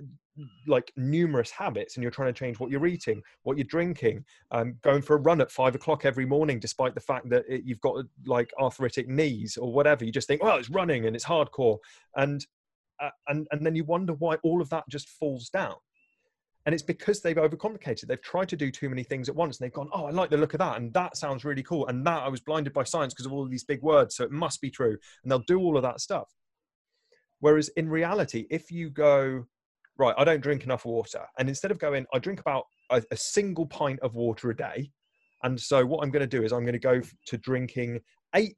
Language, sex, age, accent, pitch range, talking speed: English, male, 30-49, British, 130-170 Hz, 245 wpm